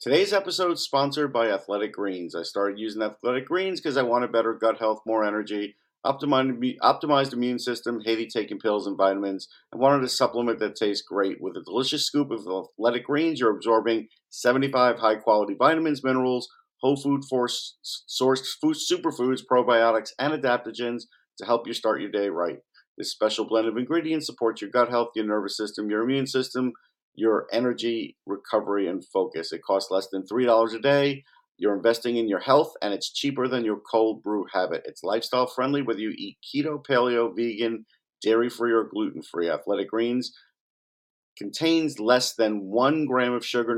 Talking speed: 170 wpm